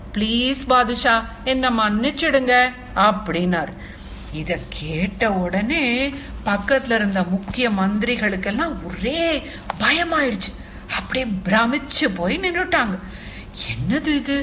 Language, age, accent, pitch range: Tamil, 60-79, native, 170-255 Hz